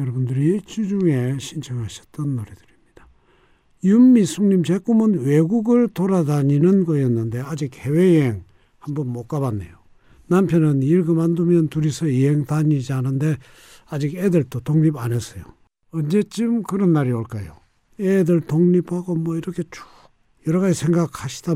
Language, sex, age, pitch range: Korean, male, 60-79, 130-185 Hz